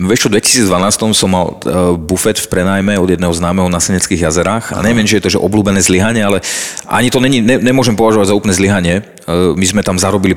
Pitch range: 90-100 Hz